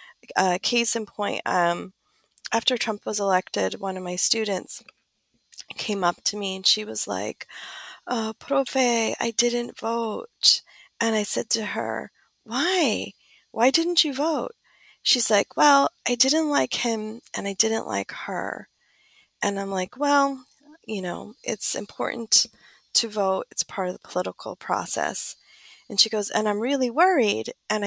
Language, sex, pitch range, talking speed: English, female, 195-265 Hz, 155 wpm